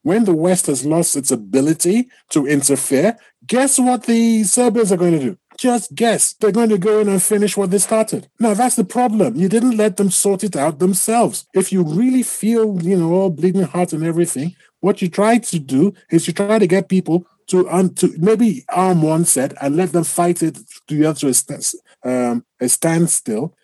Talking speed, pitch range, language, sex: 205 wpm, 150-210 Hz, English, male